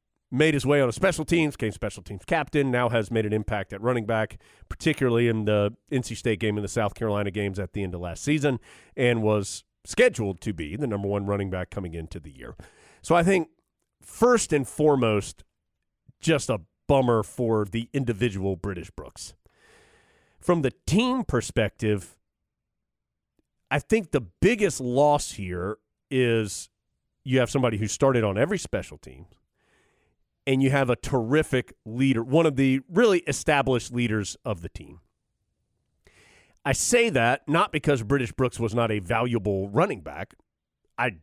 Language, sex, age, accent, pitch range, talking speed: English, male, 40-59, American, 105-140 Hz, 165 wpm